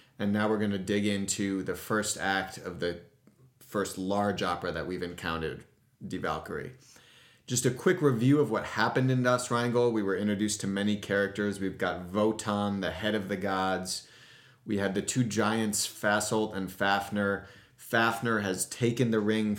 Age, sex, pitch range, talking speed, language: 30-49, male, 95-115 Hz, 170 wpm, English